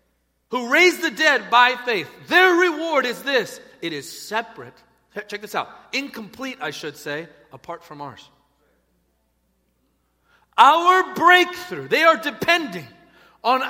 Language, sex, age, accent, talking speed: English, male, 40-59, American, 125 wpm